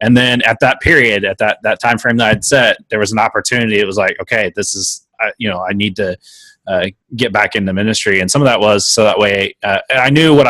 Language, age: English, 20-39